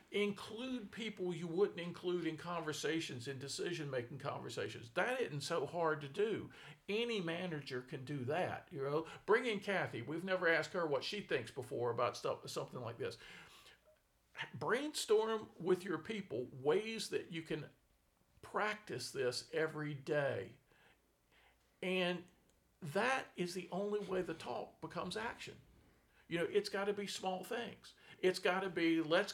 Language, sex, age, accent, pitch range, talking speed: English, male, 50-69, American, 155-205 Hz, 150 wpm